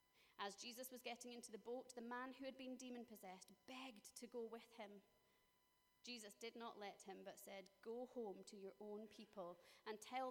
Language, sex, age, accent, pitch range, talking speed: English, female, 30-49, British, 195-240 Hz, 190 wpm